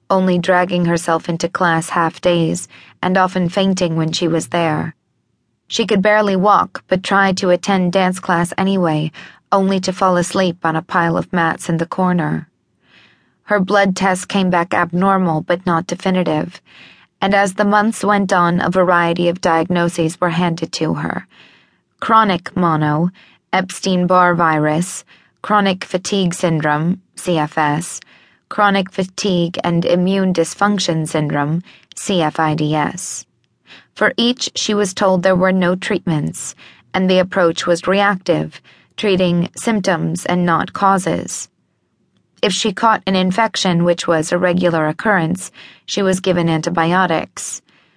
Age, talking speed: 20-39, 135 wpm